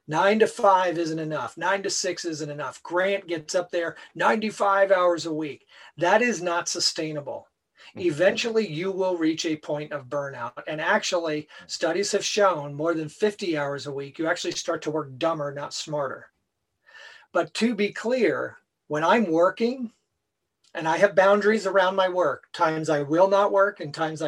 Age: 40-59